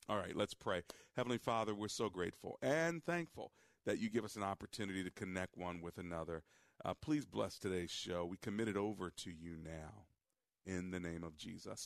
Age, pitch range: 40-59, 85-105 Hz